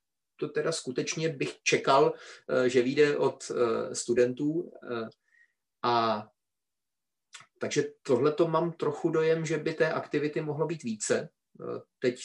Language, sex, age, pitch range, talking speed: Czech, male, 30-49, 120-150 Hz, 115 wpm